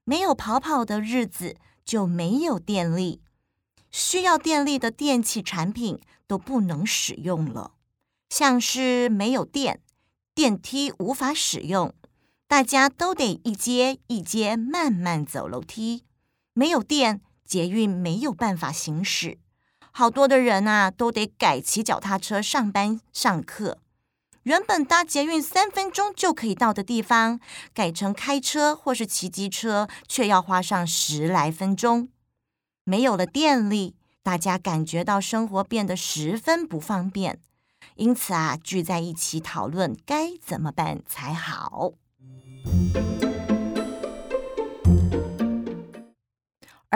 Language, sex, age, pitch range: Chinese, female, 50-69, 180-265 Hz